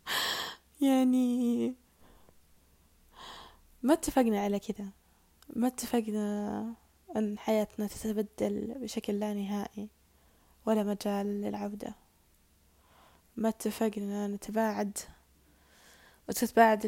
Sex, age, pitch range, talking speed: female, 10-29, 195-225 Hz, 70 wpm